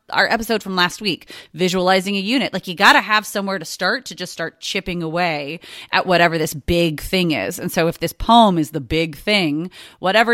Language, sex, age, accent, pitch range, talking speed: English, female, 30-49, American, 175-230 Hz, 215 wpm